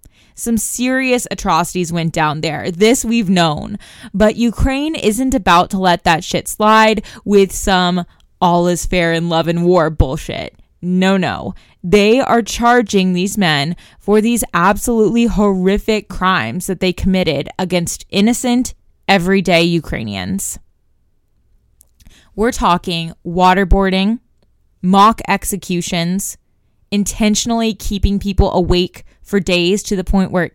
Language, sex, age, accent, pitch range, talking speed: English, female, 20-39, American, 175-210 Hz, 125 wpm